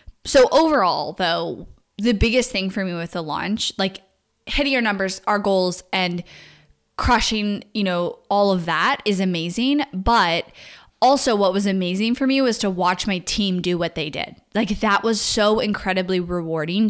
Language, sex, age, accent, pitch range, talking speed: English, female, 20-39, American, 185-225 Hz, 170 wpm